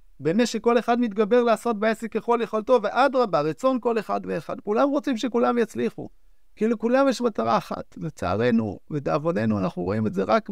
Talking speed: 165 wpm